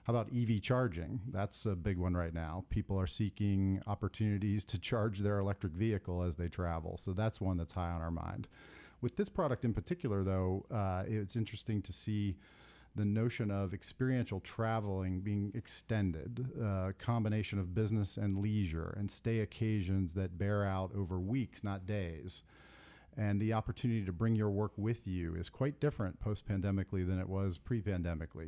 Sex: male